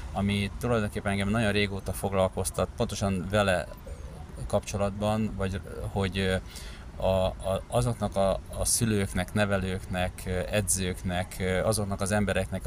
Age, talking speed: 30-49, 95 wpm